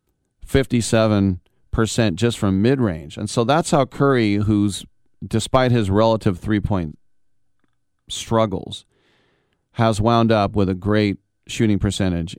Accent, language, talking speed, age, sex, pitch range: American, English, 105 wpm, 40-59, male, 100-120 Hz